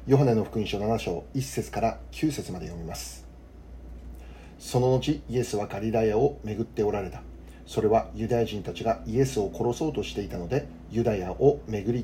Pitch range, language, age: 75-120 Hz, Japanese, 40-59